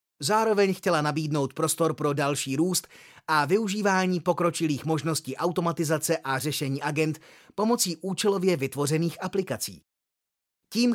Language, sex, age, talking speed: Czech, male, 30-49, 110 wpm